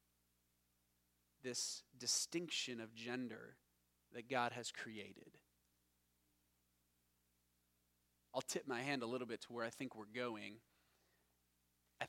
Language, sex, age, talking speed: English, male, 30-49, 110 wpm